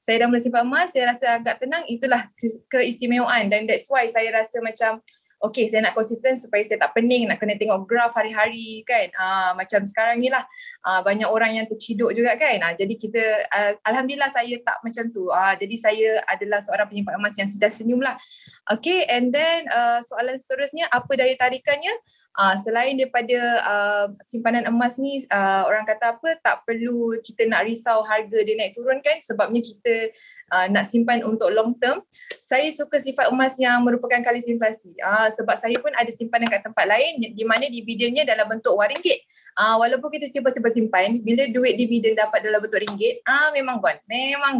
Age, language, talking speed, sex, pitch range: 20-39, Malay, 180 wpm, female, 220-270 Hz